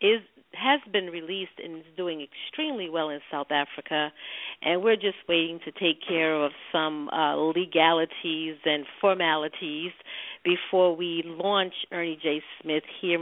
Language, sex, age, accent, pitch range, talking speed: English, female, 50-69, American, 160-190 Hz, 140 wpm